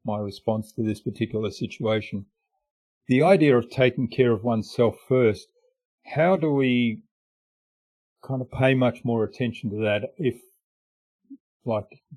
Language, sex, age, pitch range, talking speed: English, male, 40-59, 105-125 Hz, 135 wpm